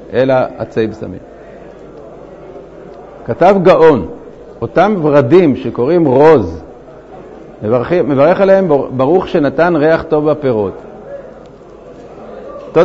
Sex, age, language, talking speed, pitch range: male, 50-69, Hebrew, 85 wpm, 130-175 Hz